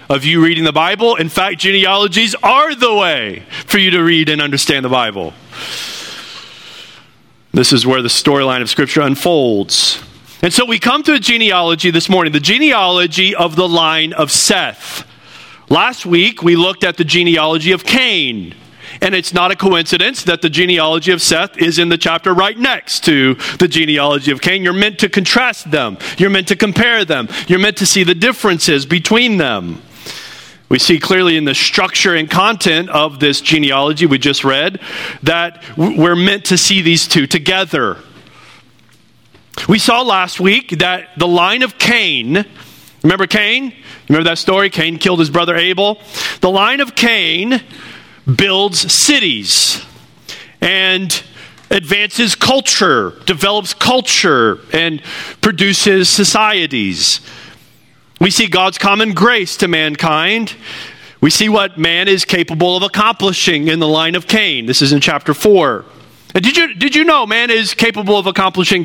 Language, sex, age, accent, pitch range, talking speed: English, male, 40-59, American, 160-205 Hz, 160 wpm